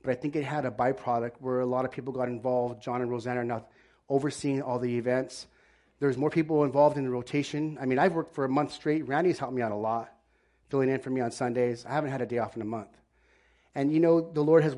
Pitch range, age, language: 115-140 Hz, 30-49, English